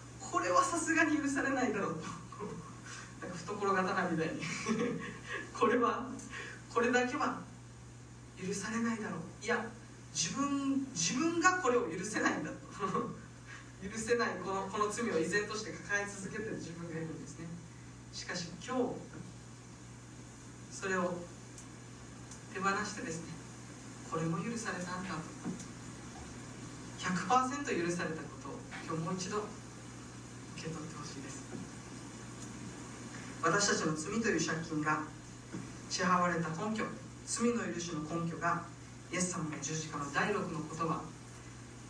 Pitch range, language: 145-205 Hz, Japanese